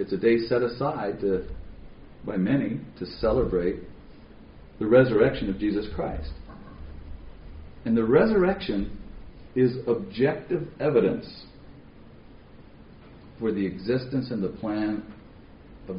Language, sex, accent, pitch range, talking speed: English, male, American, 90-125 Hz, 100 wpm